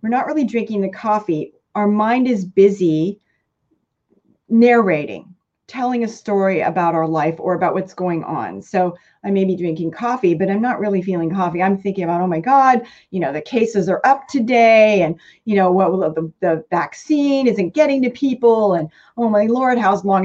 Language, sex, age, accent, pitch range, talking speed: English, female, 30-49, American, 180-235 Hz, 195 wpm